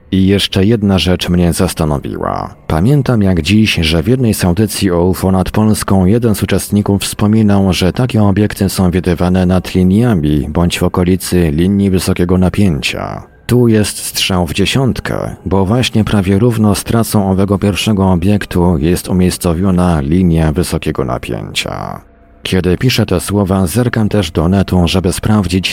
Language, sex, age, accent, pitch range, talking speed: Polish, male, 40-59, native, 85-100 Hz, 145 wpm